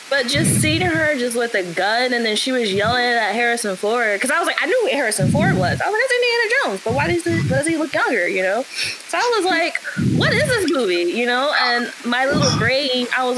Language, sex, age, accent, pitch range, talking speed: English, female, 20-39, American, 210-320 Hz, 260 wpm